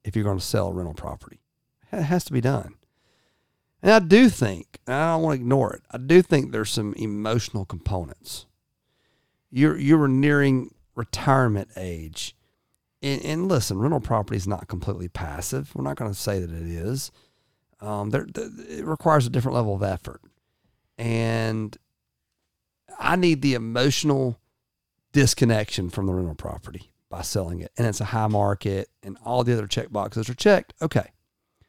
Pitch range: 100-145 Hz